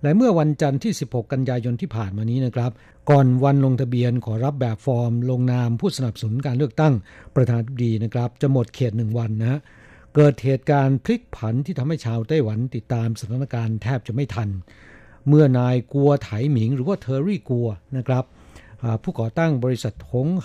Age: 60-79